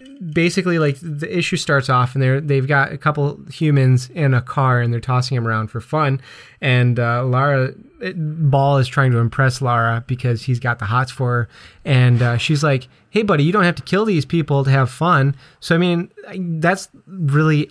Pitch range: 125-150 Hz